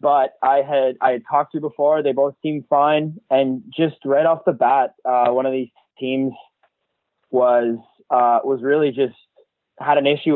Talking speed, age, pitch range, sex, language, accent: 180 wpm, 20-39, 115-150 Hz, male, English, American